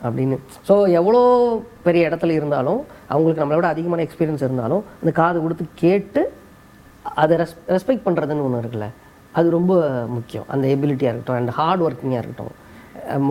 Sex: female